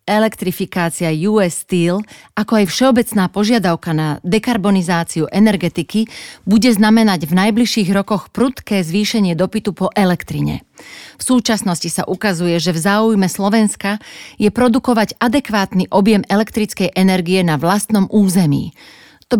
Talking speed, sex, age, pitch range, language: 120 wpm, female, 40-59, 185-220 Hz, Slovak